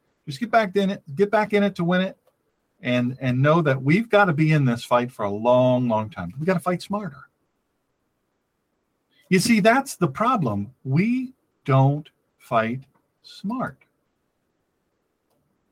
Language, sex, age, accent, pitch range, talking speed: English, male, 50-69, American, 135-190 Hz, 160 wpm